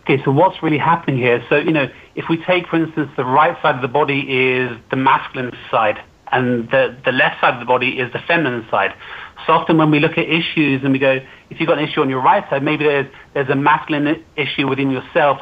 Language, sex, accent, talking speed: English, male, British, 245 wpm